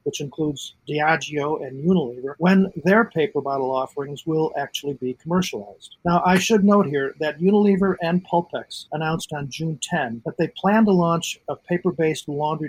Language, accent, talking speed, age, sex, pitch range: English, American, 165 wpm, 50-69, male, 140-180 Hz